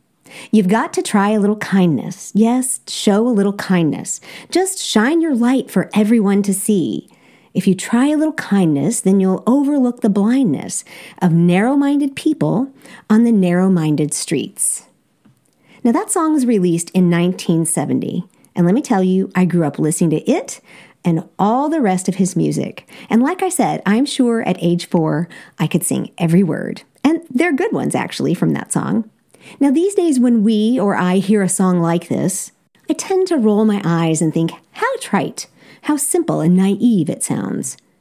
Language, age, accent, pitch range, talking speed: English, 50-69, American, 180-250 Hz, 180 wpm